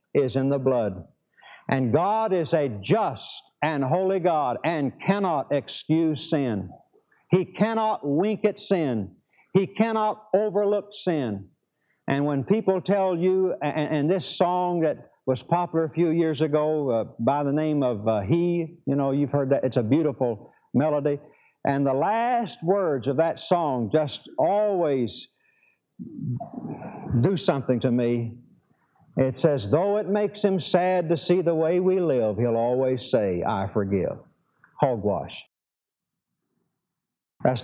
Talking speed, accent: 145 wpm, American